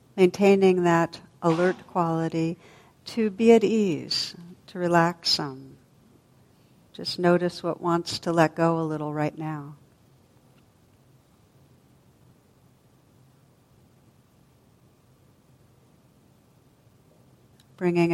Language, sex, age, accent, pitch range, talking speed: English, female, 60-79, American, 145-180 Hz, 75 wpm